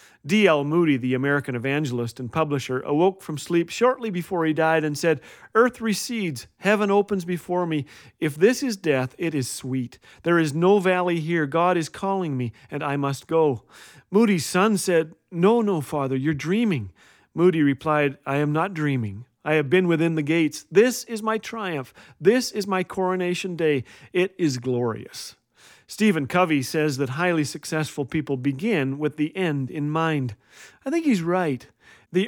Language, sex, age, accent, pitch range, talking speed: English, male, 40-59, American, 140-190 Hz, 170 wpm